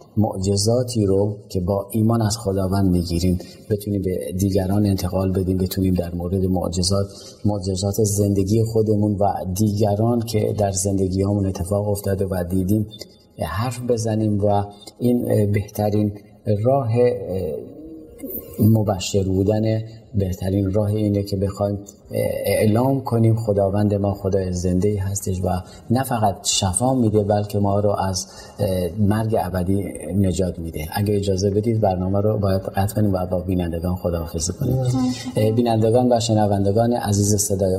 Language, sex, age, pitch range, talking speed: Persian, male, 30-49, 95-110 Hz, 125 wpm